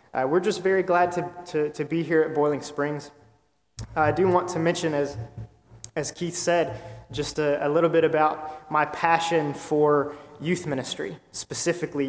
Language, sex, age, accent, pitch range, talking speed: English, male, 20-39, American, 140-160 Hz, 175 wpm